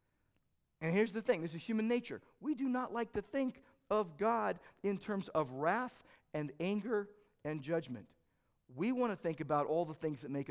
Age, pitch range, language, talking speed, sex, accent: 50-69, 160-230 Hz, English, 195 wpm, male, American